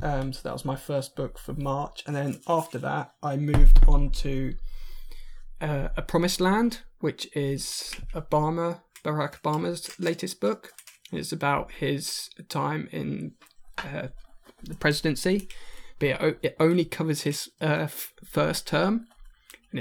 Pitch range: 135-160 Hz